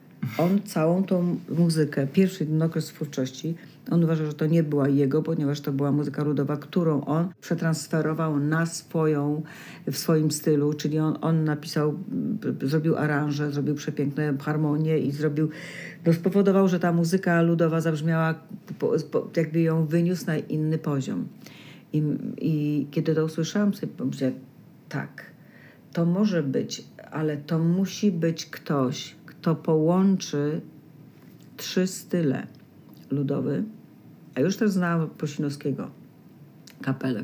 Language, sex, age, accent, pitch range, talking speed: Polish, female, 40-59, native, 145-170 Hz, 125 wpm